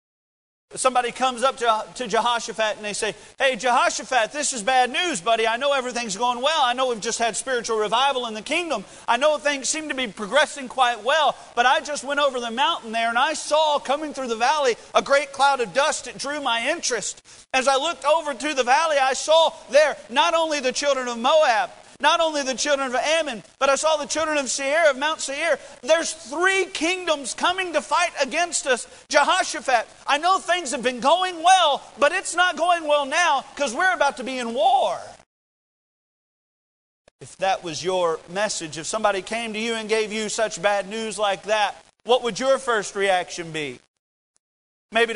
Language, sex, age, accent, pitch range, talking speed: English, male, 40-59, American, 225-300 Hz, 200 wpm